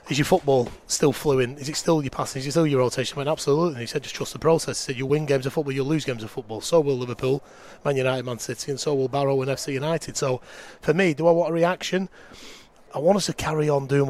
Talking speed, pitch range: 275 wpm, 125-145 Hz